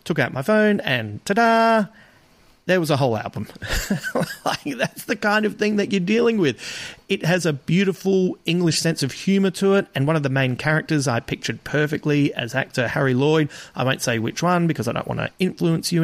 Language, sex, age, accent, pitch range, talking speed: English, male, 40-59, Australian, 135-180 Hz, 205 wpm